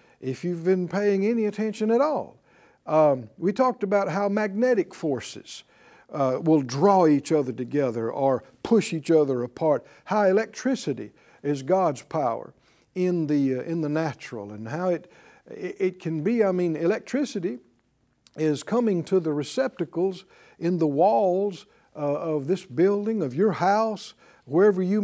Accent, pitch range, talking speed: American, 145-205 Hz, 150 wpm